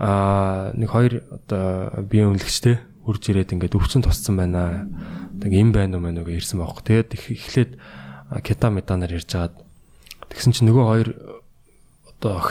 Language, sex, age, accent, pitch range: Korean, male, 20-39, native, 95-120 Hz